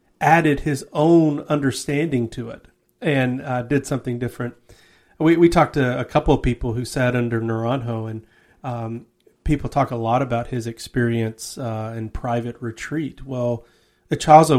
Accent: American